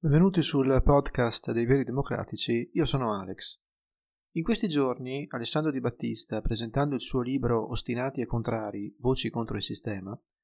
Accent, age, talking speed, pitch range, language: native, 30-49, 150 wpm, 125-165 Hz, Italian